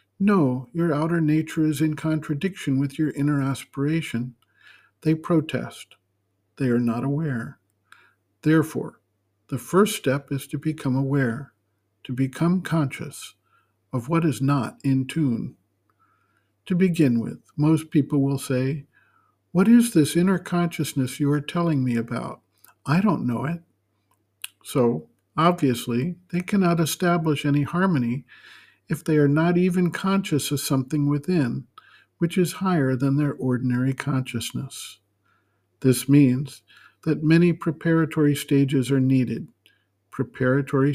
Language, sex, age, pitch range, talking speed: English, male, 50-69, 130-160 Hz, 125 wpm